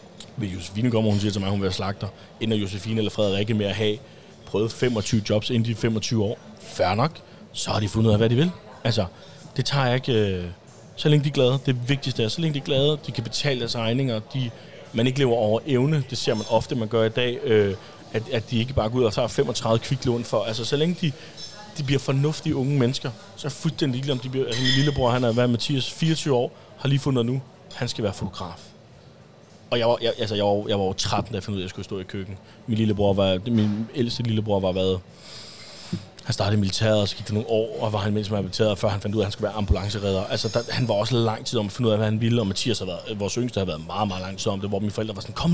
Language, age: Danish, 30-49